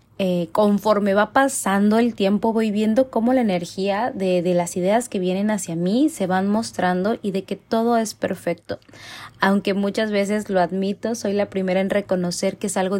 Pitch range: 180-225 Hz